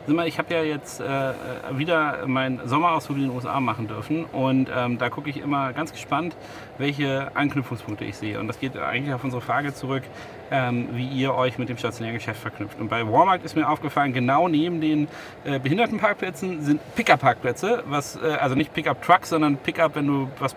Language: German